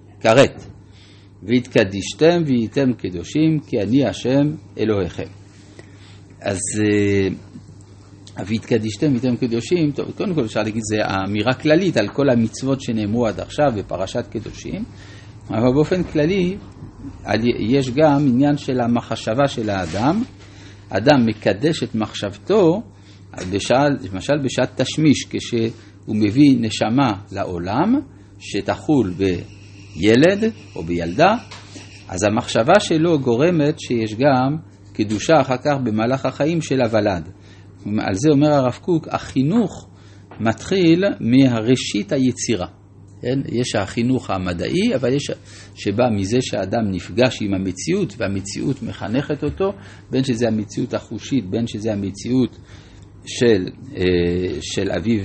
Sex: male